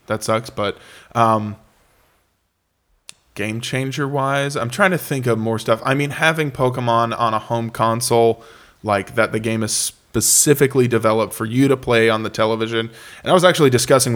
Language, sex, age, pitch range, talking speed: English, male, 20-39, 105-125 Hz, 175 wpm